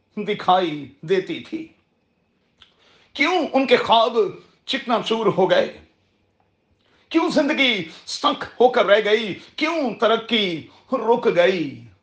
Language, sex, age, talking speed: Urdu, male, 40-59, 110 wpm